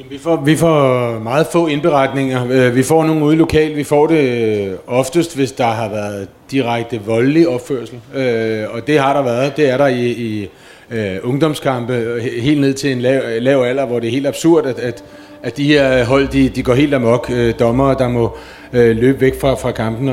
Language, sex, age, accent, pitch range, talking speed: Danish, male, 30-49, native, 125-150 Hz, 195 wpm